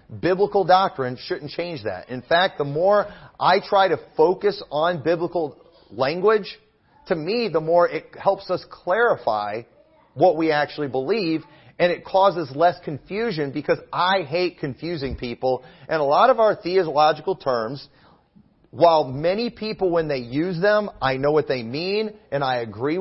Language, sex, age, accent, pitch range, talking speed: English, male, 40-59, American, 145-185 Hz, 155 wpm